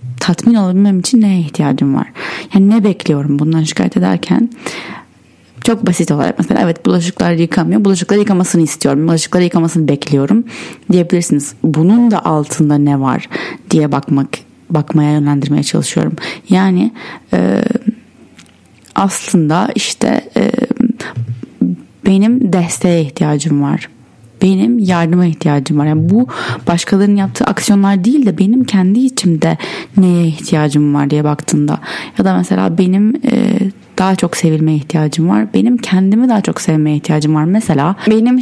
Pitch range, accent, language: 155-210 Hz, native, Turkish